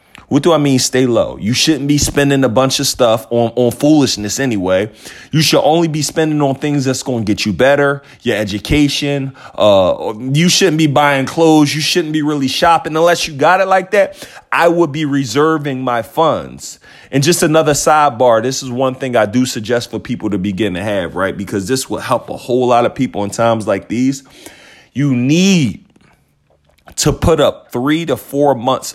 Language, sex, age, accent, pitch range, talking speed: English, male, 30-49, American, 125-160 Hz, 200 wpm